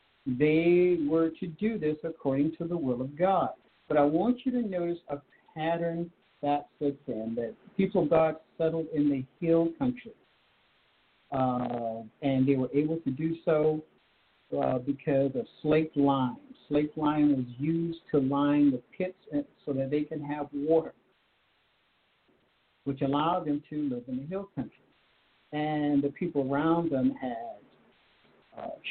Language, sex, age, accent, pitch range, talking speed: English, male, 60-79, American, 140-170 Hz, 155 wpm